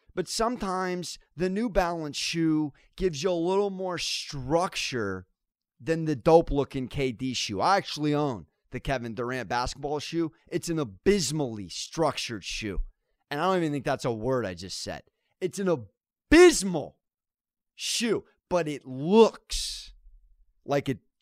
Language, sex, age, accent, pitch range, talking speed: English, male, 30-49, American, 120-165 Hz, 140 wpm